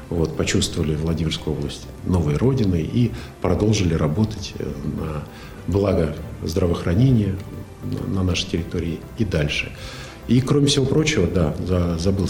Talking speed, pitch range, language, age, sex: 115 wpm, 85-105 Hz, Russian, 50-69, male